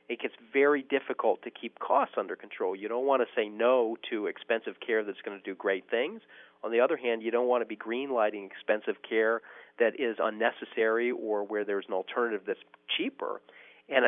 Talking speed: 200 wpm